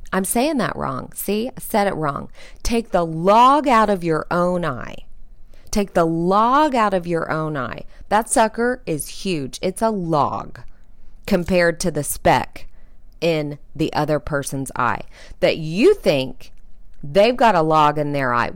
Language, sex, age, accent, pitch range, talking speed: English, female, 40-59, American, 145-200 Hz, 165 wpm